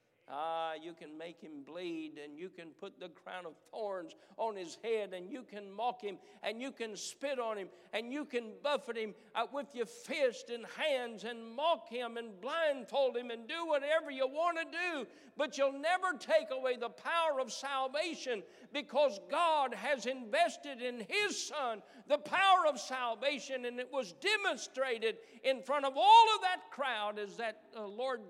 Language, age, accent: English, 60-79, American